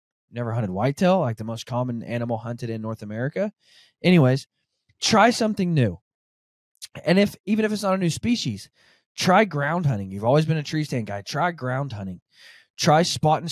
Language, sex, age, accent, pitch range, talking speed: English, male, 20-39, American, 120-165 Hz, 180 wpm